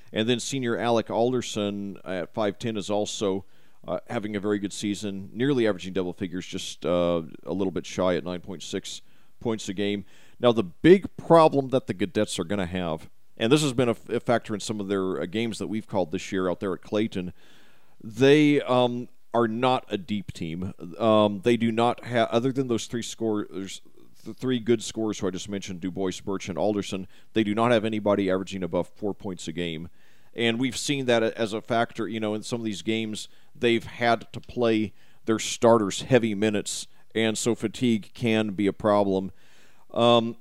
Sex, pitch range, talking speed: male, 95-115 Hz, 200 wpm